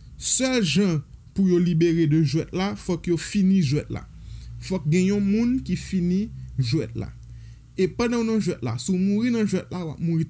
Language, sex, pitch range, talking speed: French, male, 140-180 Hz, 190 wpm